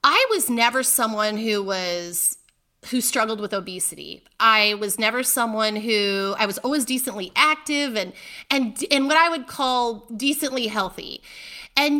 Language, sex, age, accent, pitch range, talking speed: English, female, 30-49, American, 210-270 Hz, 150 wpm